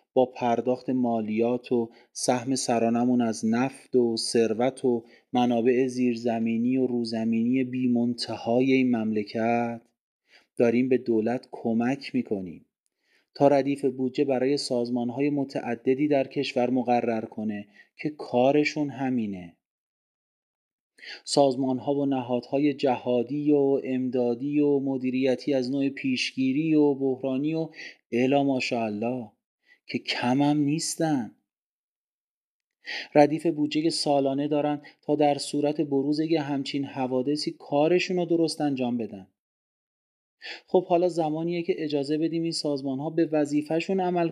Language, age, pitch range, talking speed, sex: Persian, 30-49, 120-145 Hz, 110 wpm, male